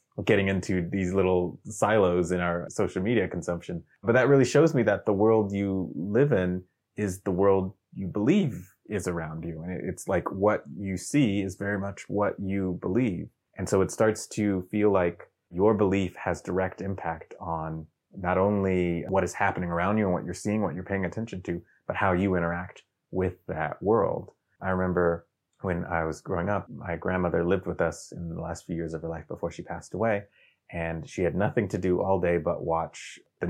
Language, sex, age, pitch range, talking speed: English, male, 30-49, 85-100 Hz, 200 wpm